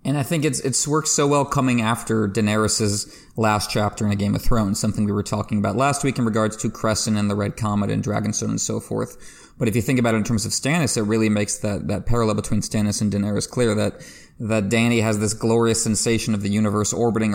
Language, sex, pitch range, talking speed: English, male, 105-120 Hz, 240 wpm